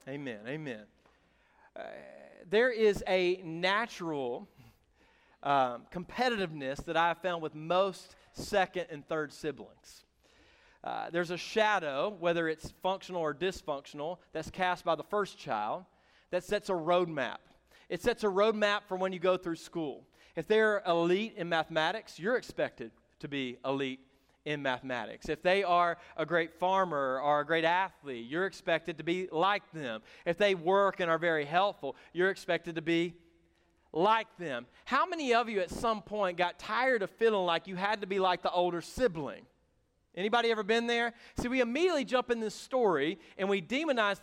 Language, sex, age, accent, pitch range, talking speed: English, male, 40-59, American, 165-215 Hz, 165 wpm